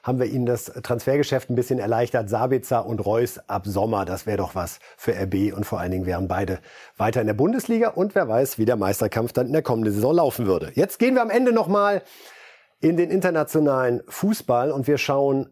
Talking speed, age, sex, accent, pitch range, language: 220 wpm, 50-69, male, German, 120-165 Hz, German